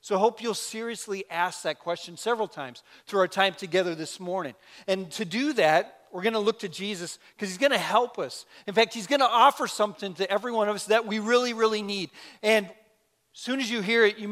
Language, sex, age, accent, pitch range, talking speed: English, male, 40-59, American, 155-210 Hz, 240 wpm